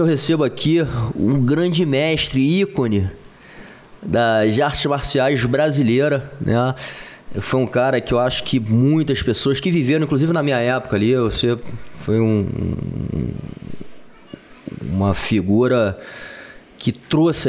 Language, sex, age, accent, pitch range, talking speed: Portuguese, male, 20-39, Brazilian, 120-150 Hz, 125 wpm